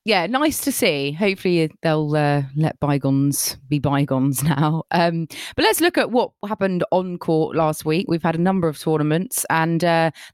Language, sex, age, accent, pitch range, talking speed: English, female, 20-39, British, 150-195 Hz, 180 wpm